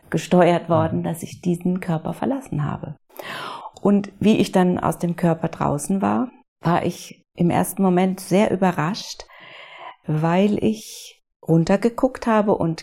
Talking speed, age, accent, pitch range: 135 wpm, 40-59, German, 165-210 Hz